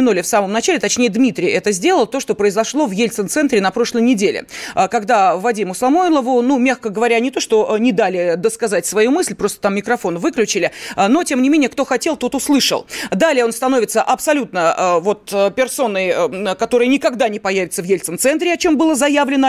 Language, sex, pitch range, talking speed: Russian, female, 225-295 Hz, 170 wpm